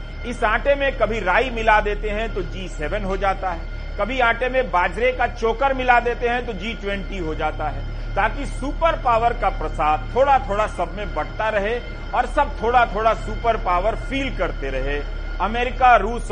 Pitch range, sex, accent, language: 170-245 Hz, male, native, Hindi